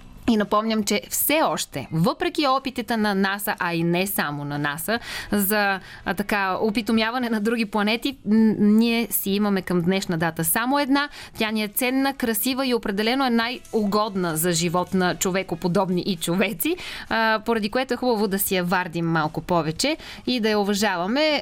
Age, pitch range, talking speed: 20-39, 180-235 Hz, 170 wpm